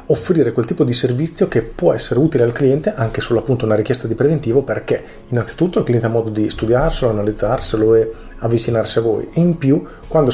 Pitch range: 110-130 Hz